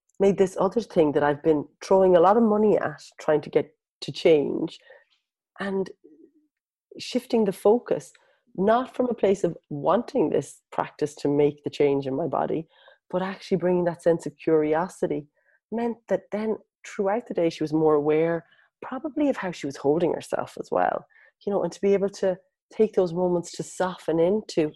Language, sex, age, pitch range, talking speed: English, female, 30-49, 155-200 Hz, 185 wpm